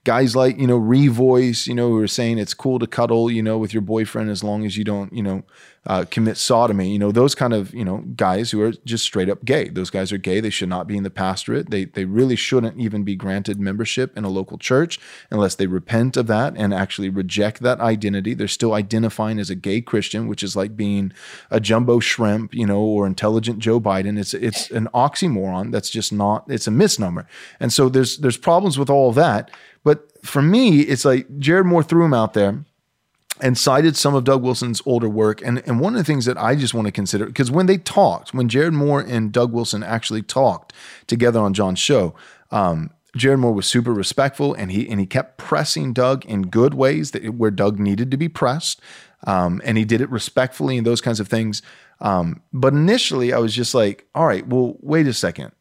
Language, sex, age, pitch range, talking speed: English, male, 20-39, 105-135 Hz, 225 wpm